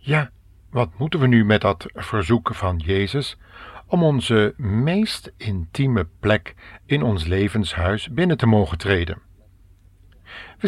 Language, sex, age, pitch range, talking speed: Dutch, male, 50-69, 95-120 Hz, 130 wpm